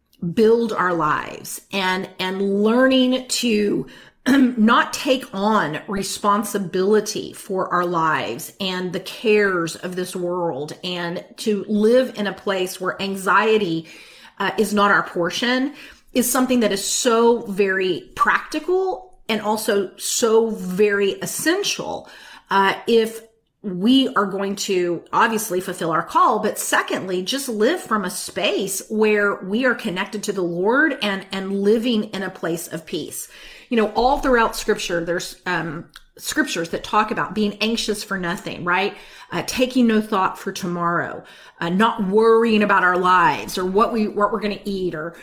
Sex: female